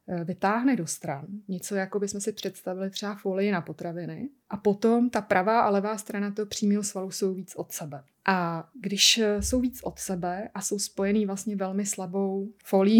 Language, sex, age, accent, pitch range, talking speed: Czech, female, 30-49, native, 185-210 Hz, 180 wpm